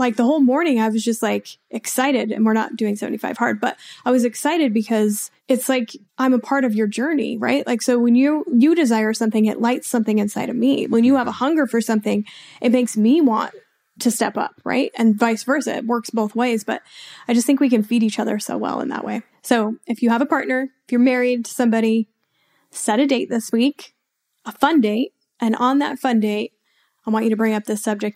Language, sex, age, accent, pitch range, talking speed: English, female, 10-29, American, 220-260 Hz, 235 wpm